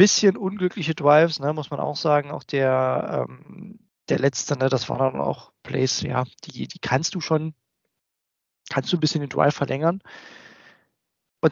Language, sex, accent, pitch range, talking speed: German, male, German, 130-155 Hz, 170 wpm